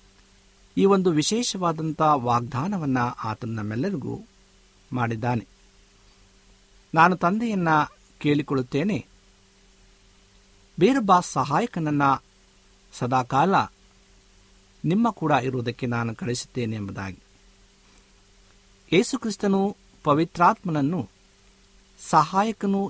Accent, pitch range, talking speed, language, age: native, 100-165 Hz, 60 wpm, Kannada, 50-69